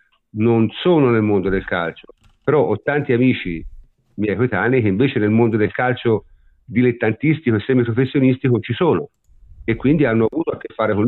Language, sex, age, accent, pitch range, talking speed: Italian, male, 50-69, native, 105-145 Hz, 170 wpm